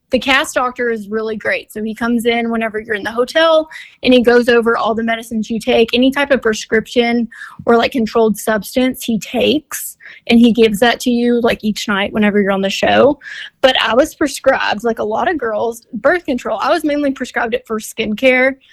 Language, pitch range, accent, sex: English, 225-260 Hz, American, female